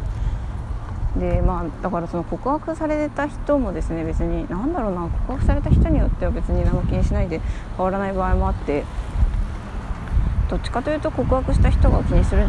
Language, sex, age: Japanese, female, 20-39